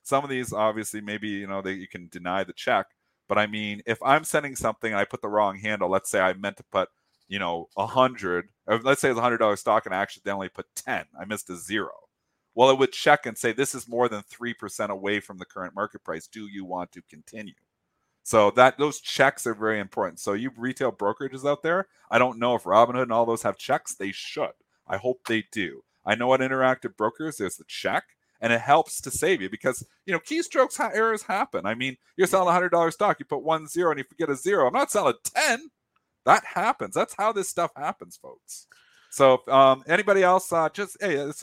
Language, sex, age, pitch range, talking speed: English, male, 30-49, 100-140 Hz, 230 wpm